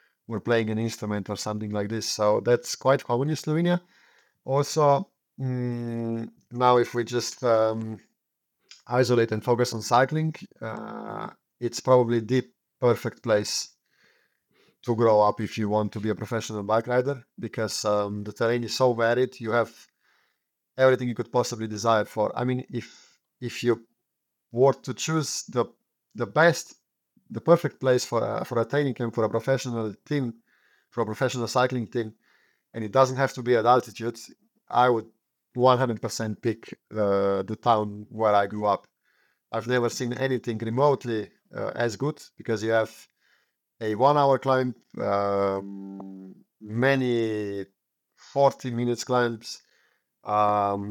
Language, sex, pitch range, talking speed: English, male, 110-125 Hz, 145 wpm